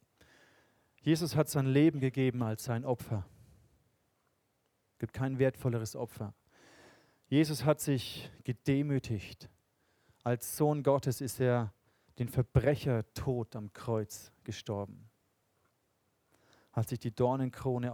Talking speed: 105 wpm